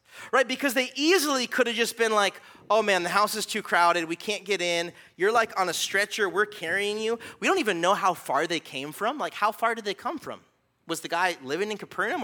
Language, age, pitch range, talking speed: English, 30-49, 195-260 Hz, 245 wpm